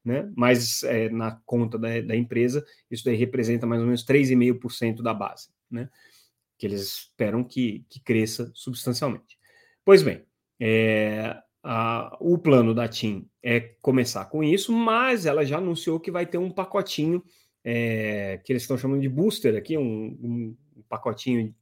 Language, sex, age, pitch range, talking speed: Portuguese, male, 30-49, 115-145 Hz, 160 wpm